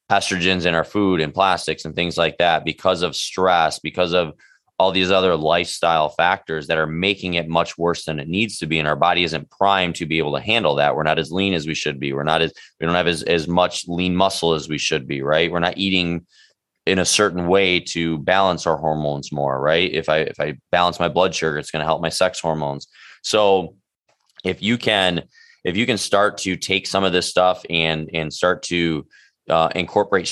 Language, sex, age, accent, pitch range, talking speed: English, male, 20-39, American, 80-90 Hz, 225 wpm